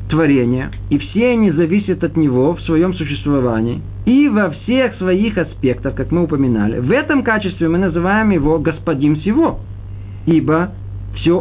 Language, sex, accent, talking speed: Russian, male, native, 140 wpm